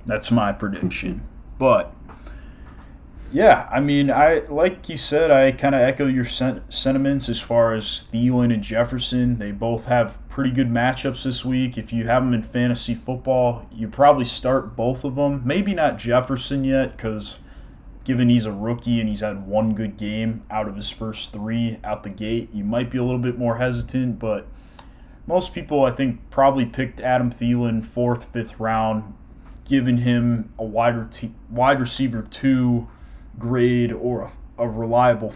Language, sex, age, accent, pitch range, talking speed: English, male, 30-49, American, 110-130 Hz, 165 wpm